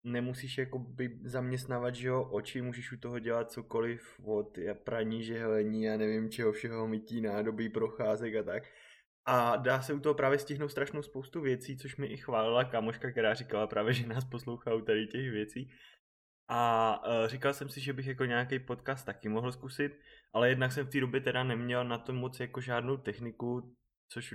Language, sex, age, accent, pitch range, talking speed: Czech, male, 20-39, native, 115-135 Hz, 185 wpm